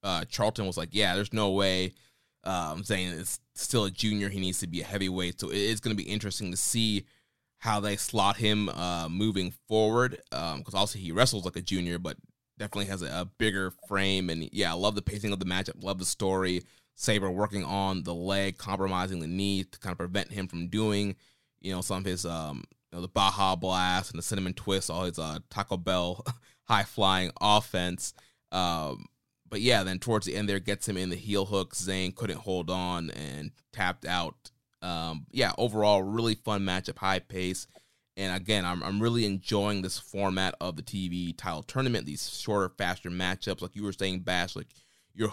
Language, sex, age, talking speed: English, male, 20-39, 205 wpm